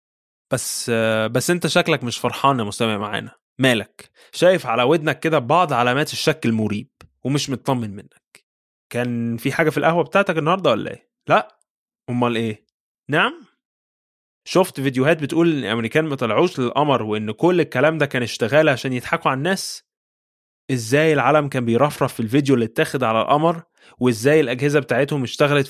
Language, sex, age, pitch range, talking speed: Arabic, male, 20-39, 120-170 Hz, 155 wpm